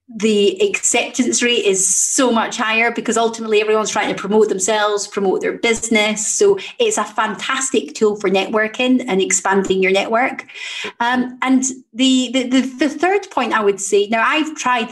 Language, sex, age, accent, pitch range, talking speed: English, female, 30-49, British, 200-240 Hz, 170 wpm